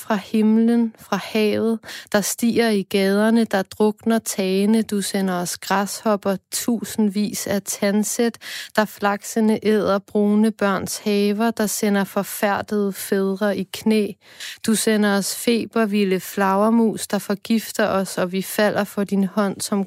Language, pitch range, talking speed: Danish, 195-215 Hz, 135 wpm